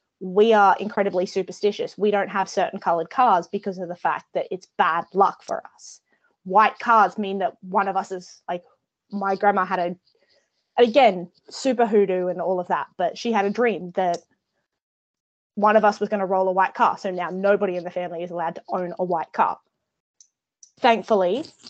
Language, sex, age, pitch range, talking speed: English, female, 20-39, 185-220 Hz, 195 wpm